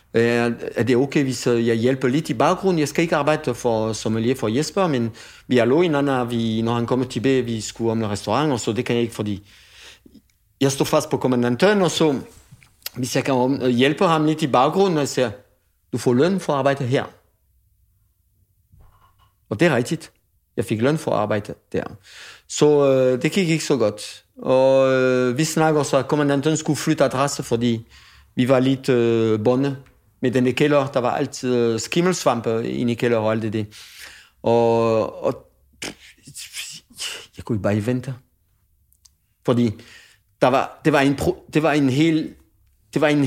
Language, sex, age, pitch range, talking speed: English, male, 50-69, 110-145 Hz, 180 wpm